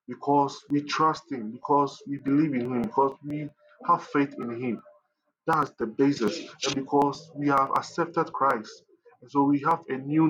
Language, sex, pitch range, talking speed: English, male, 140-185 Hz, 175 wpm